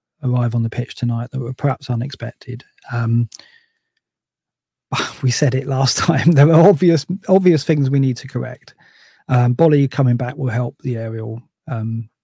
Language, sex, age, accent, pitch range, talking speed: English, male, 40-59, British, 115-135 Hz, 160 wpm